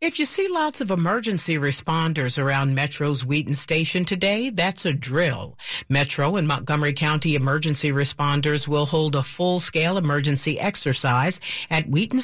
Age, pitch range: 50-69, 145-200 Hz